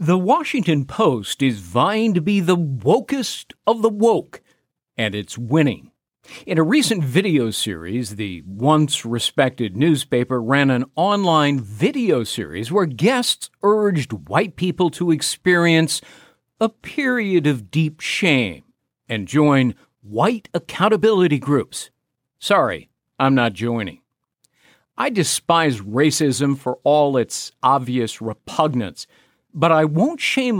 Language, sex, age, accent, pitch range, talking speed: English, male, 50-69, American, 125-180 Hz, 120 wpm